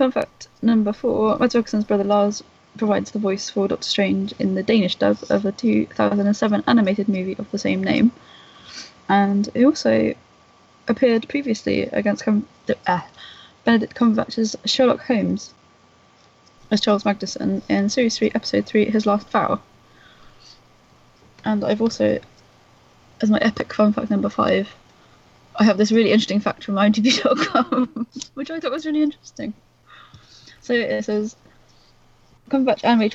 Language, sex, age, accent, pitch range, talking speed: English, female, 20-39, British, 195-230 Hz, 140 wpm